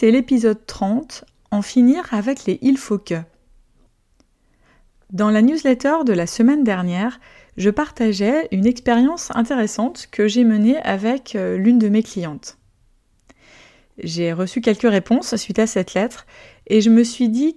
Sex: female